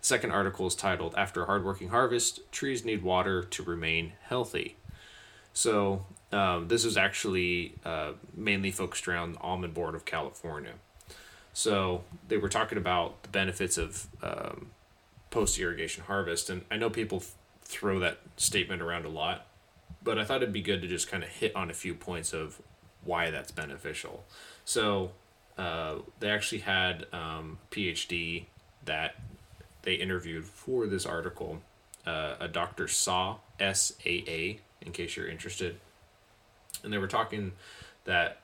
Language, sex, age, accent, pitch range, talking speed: English, male, 20-39, American, 85-100 Hz, 150 wpm